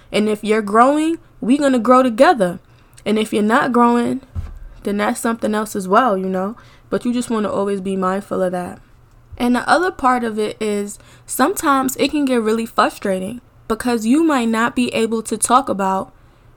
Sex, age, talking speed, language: female, 10-29, 195 wpm, English